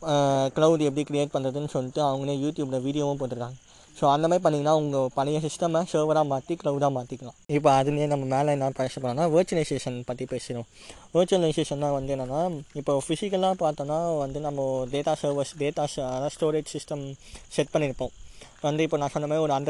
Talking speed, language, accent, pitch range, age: 155 wpm, Tamil, native, 135-155 Hz, 20-39